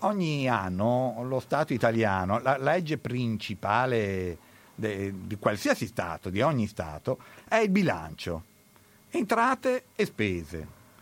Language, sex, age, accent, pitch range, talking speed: Italian, male, 50-69, native, 110-130 Hz, 110 wpm